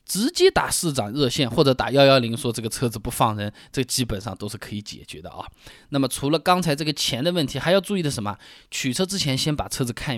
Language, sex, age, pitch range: Chinese, male, 20-39, 125-165 Hz